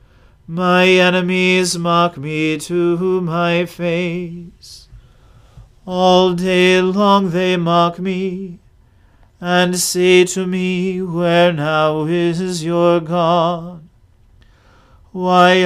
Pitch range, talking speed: 170-185 Hz, 90 wpm